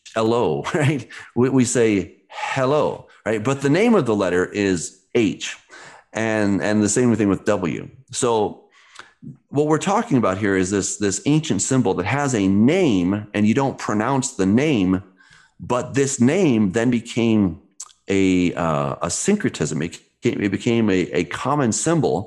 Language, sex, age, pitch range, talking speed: English, male, 40-59, 90-120 Hz, 160 wpm